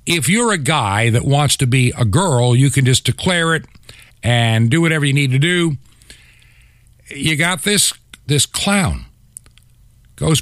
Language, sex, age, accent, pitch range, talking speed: English, male, 50-69, American, 115-160 Hz, 160 wpm